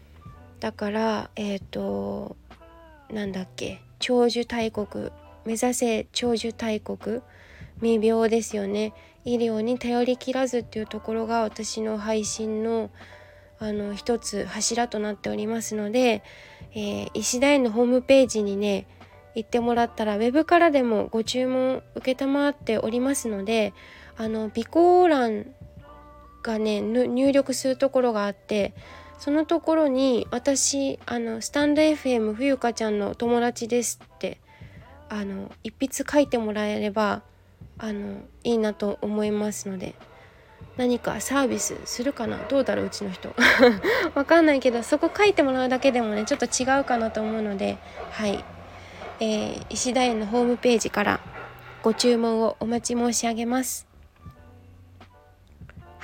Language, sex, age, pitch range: Japanese, female, 20-39, 210-250 Hz